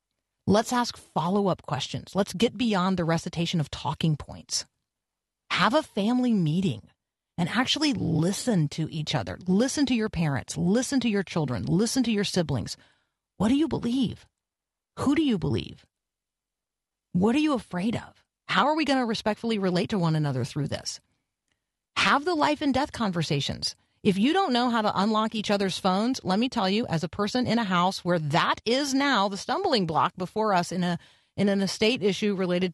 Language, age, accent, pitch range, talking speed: English, 40-59, American, 175-245 Hz, 185 wpm